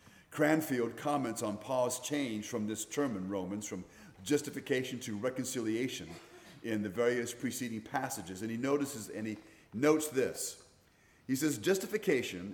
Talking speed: 140 wpm